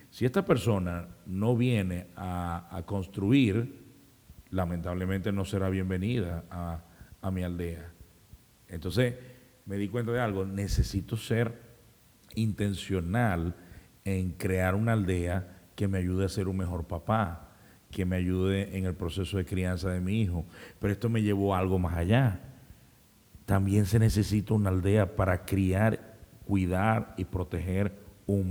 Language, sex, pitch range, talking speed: Spanish, male, 95-115 Hz, 140 wpm